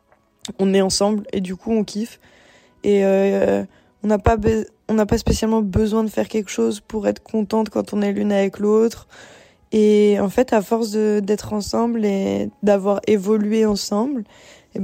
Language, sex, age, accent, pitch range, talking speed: French, female, 20-39, French, 200-225 Hz, 180 wpm